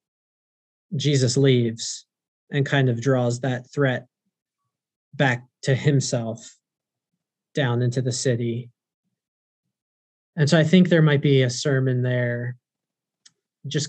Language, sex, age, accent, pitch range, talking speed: English, male, 20-39, American, 125-145 Hz, 110 wpm